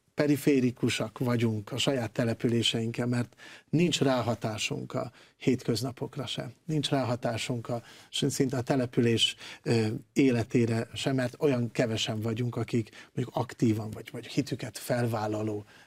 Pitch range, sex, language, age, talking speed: 120-140 Hz, male, Hungarian, 50-69, 115 wpm